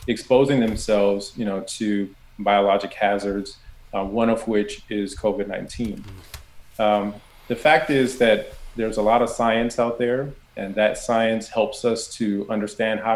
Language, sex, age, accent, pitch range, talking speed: English, male, 30-49, American, 105-115 Hz, 145 wpm